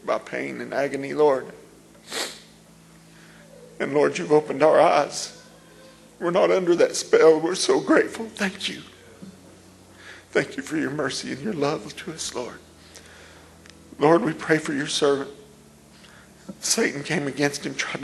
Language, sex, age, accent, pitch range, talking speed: English, male, 40-59, American, 125-150 Hz, 145 wpm